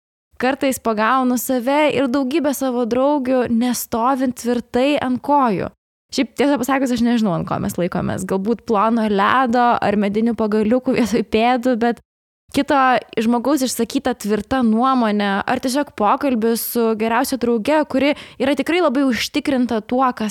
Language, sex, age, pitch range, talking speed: English, female, 20-39, 225-265 Hz, 140 wpm